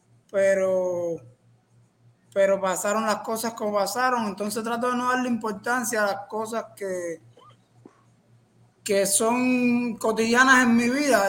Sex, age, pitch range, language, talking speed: male, 20-39, 170-210 Hz, Spanish, 120 wpm